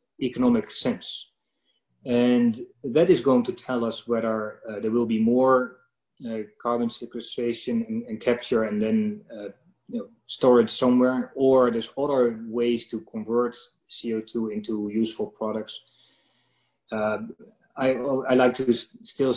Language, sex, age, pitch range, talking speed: English, male, 30-49, 115-135 Hz, 130 wpm